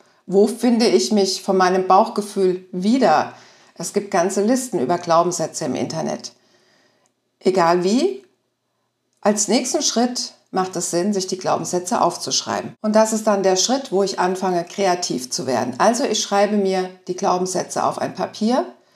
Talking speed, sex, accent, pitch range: 155 wpm, female, German, 180-225 Hz